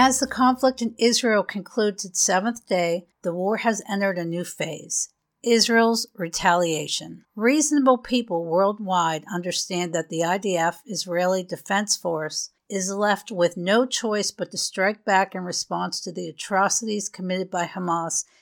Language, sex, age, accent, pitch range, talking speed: English, female, 50-69, American, 175-215 Hz, 145 wpm